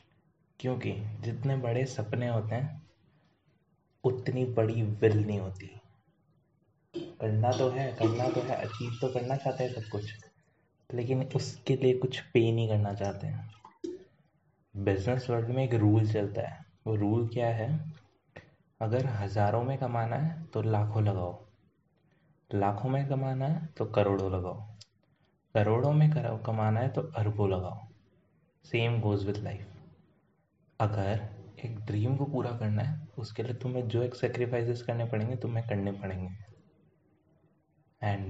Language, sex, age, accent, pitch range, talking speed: Hindi, male, 20-39, native, 105-130 Hz, 140 wpm